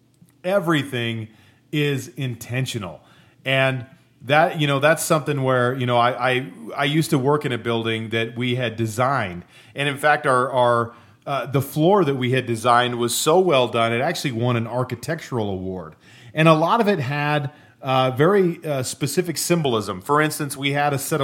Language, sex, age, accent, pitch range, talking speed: English, male, 40-59, American, 120-150 Hz, 180 wpm